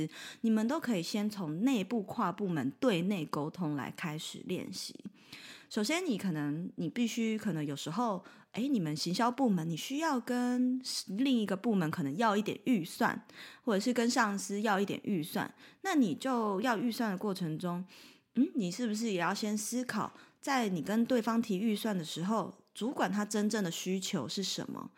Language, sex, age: Chinese, female, 20-39